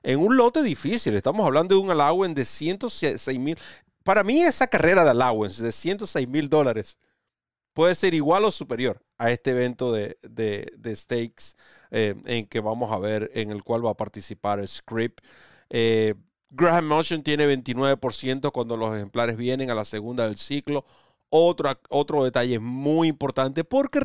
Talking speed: 170 wpm